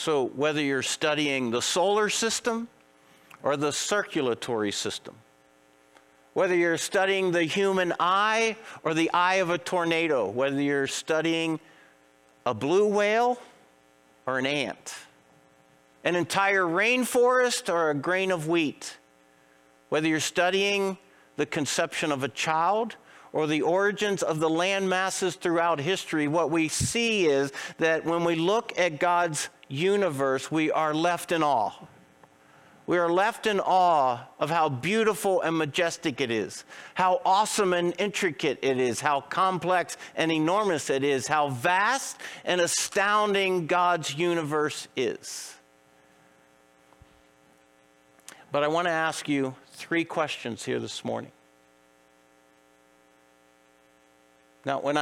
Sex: male